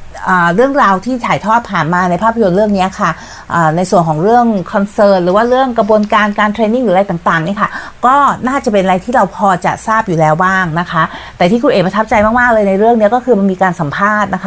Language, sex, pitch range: Thai, female, 180-225 Hz